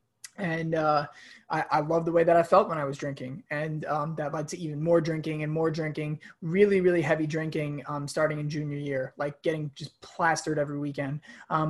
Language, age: English, 20-39